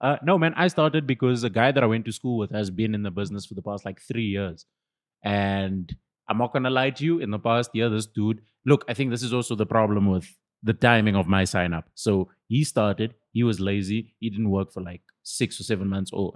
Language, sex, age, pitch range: English, male, 20-39, 105-140 Hz